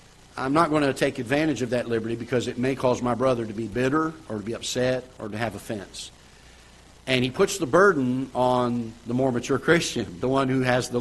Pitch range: 115-140 Hz